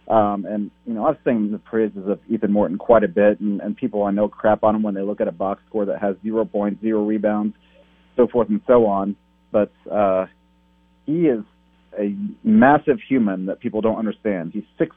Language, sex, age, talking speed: English, male, 40-59, 215 wpm